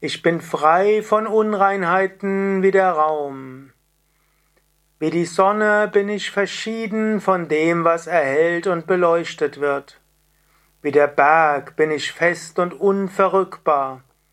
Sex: male